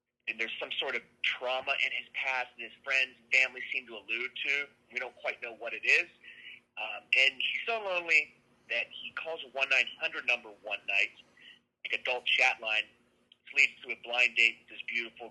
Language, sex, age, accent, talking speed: English, male, 30-49, American, 200 wpm